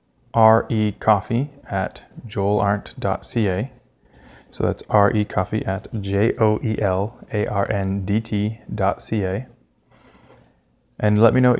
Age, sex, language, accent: 20-39, male, English, American